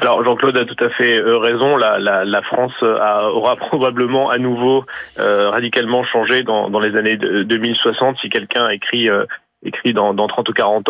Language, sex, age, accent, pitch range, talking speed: French, male, 30-49, French, 110-130 Hz, 185 wpm